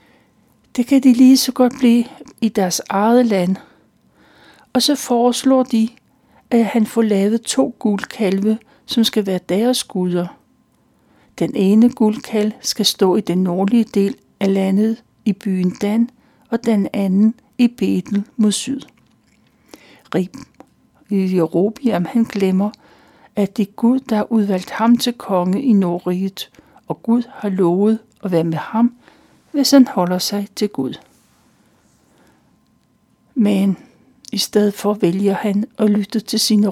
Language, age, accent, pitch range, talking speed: Danish, 60-79, native, 195-240 Hz, 145 wpm